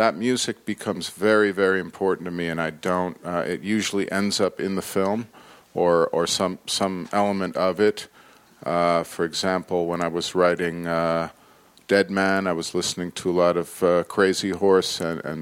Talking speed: 185 wpm